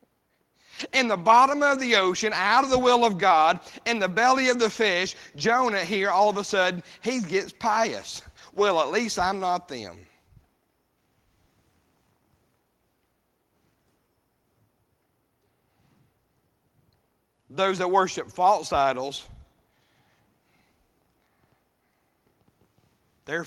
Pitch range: 130-195 Hz